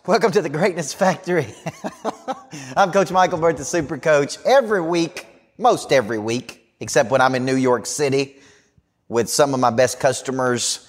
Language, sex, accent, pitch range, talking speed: English, male, American, 110-135 Hz, 165 wpm